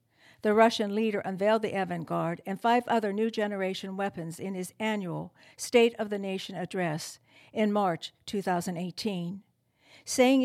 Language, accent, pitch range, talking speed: English, American, 170-220 Hz, 140 wpm